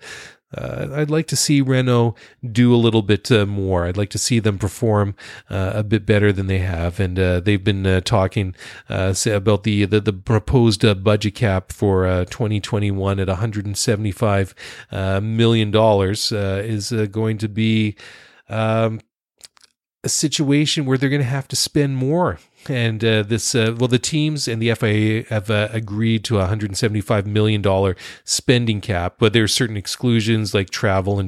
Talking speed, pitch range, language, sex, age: 175 wpm, 105-120 Hz, English, male, 40-59